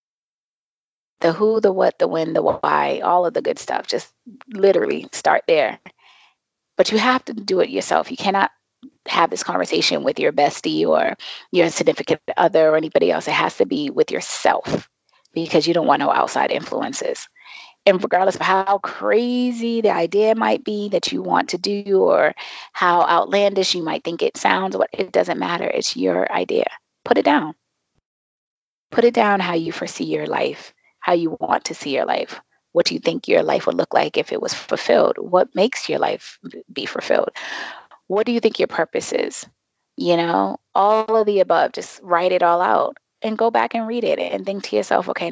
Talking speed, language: 195 wpm, English